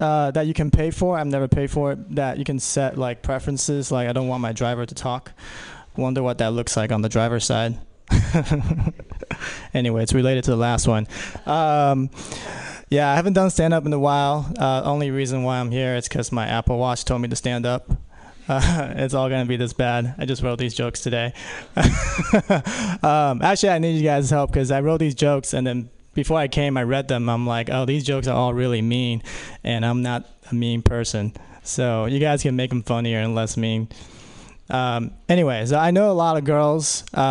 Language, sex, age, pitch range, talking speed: English, male, 20-39, 125-150 Hz, 210 wpm